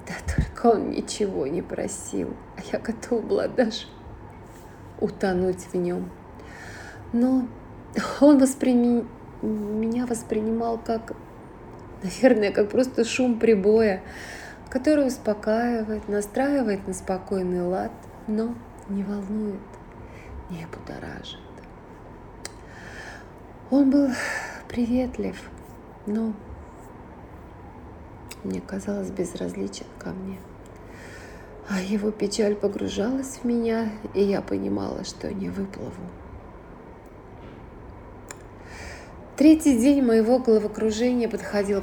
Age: 30-49